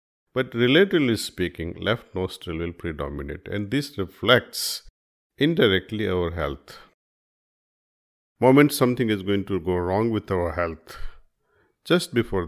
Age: 50-69